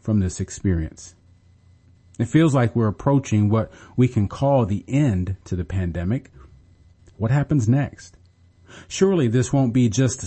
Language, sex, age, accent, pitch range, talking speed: English, male, 40-59, American, 90-130 Hz, 145 wpm